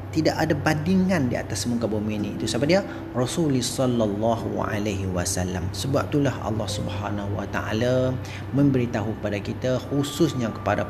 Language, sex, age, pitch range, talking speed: Malay, male, 30-49, 105-125 Hz, 120 wpm